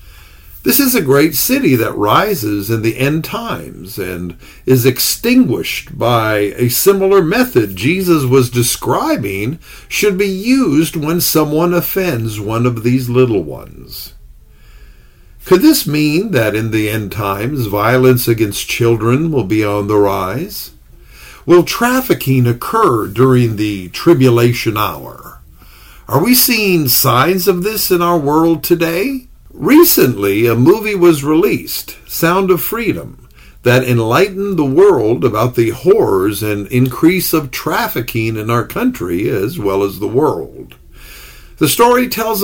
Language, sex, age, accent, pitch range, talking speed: English, male, 50-69, American, 110-180 Hz, 135 wpm